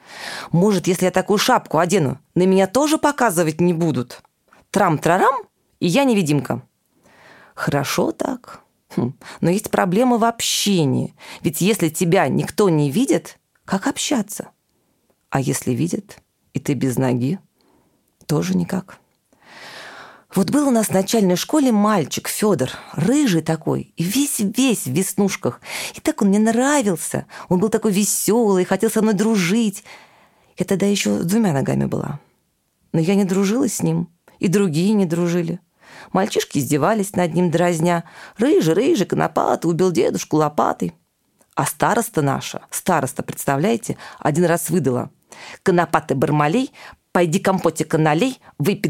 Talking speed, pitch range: 135 wpm, 165-220 Hz